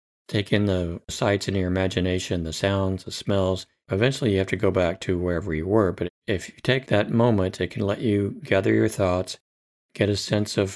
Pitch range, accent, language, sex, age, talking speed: 90-105 Hz, American, English, male, 40-59, 210 wpm